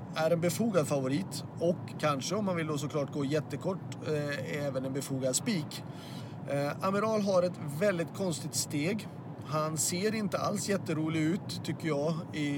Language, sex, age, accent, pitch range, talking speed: Swedish, male, 30-49, native, 140-175 Hz, 160 wpm